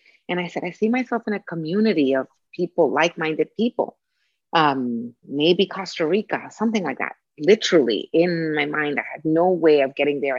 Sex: female